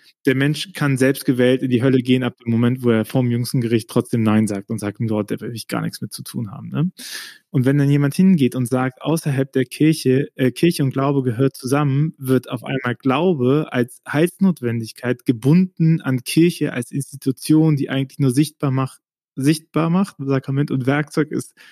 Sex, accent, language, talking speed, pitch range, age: male, German, German, 200 wpm, 130-150 Hz, 20-39